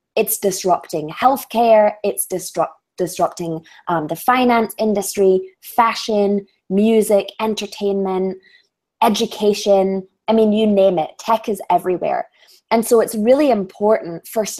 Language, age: English, 20-39